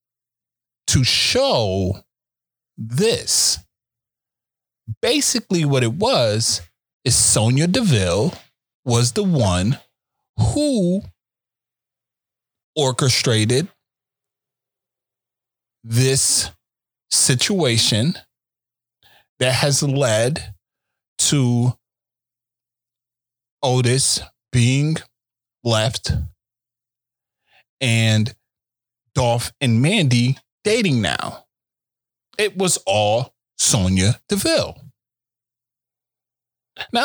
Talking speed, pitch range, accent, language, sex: 60 wpm, 100-125 Hz, American, English, male